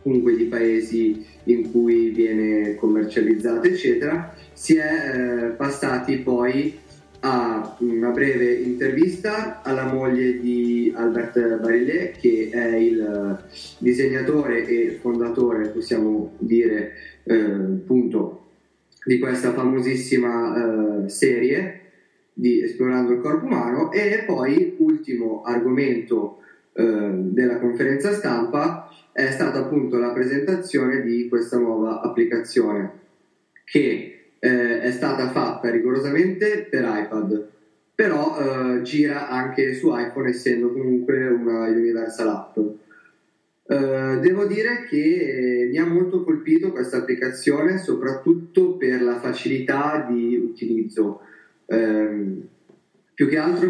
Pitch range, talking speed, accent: 115-140 Hz, 110 wpm, native